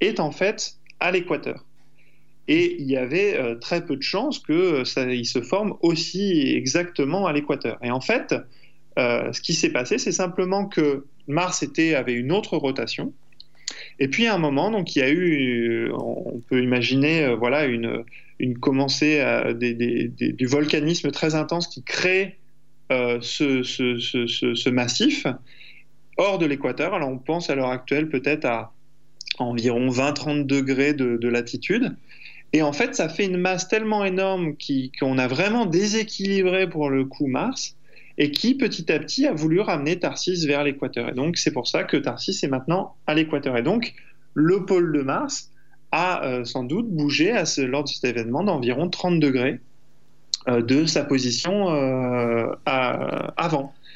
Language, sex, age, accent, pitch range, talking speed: French, male, 20-39, French, 130-175 Hz, 175 wpm